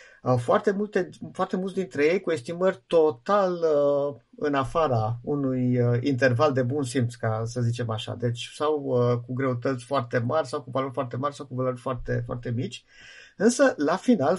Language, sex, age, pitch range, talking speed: Romanian, male, 50-69, 125-170 Hz, 180 wpm